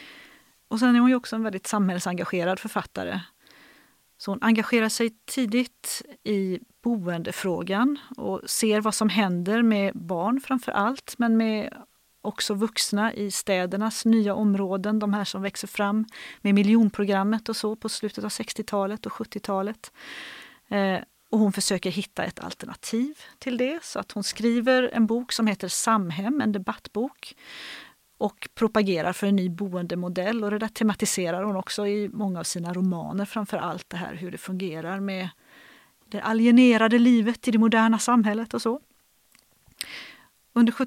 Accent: native